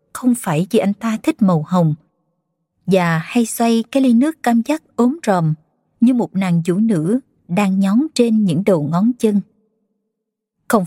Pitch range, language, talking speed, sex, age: 180-235 Hz, Vietnamese, 170 wpm, female, 20-39